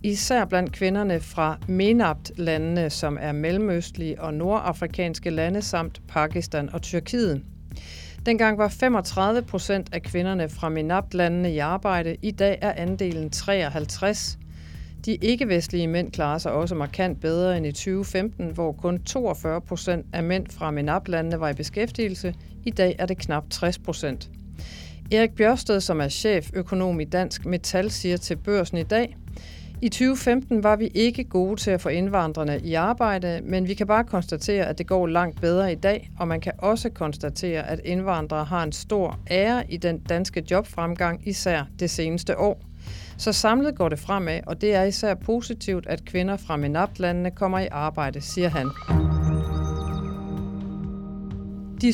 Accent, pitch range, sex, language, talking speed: native, 165-205 Hz, female, Danish, 155 wpm